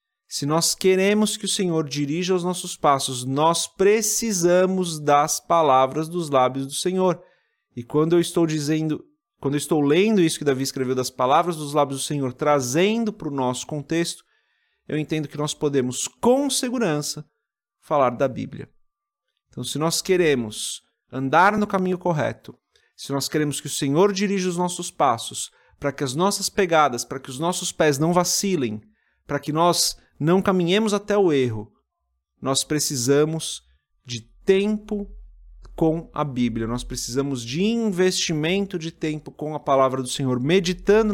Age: 30-49